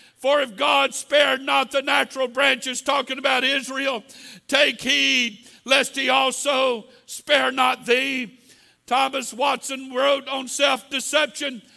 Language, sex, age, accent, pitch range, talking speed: English, male, 60-79, American, 260-285 Hz, 120 wpm